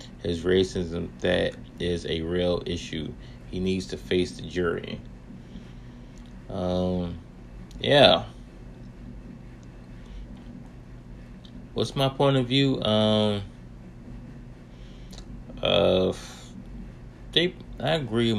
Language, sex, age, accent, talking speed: English, male, 30-49, American, 80 wpm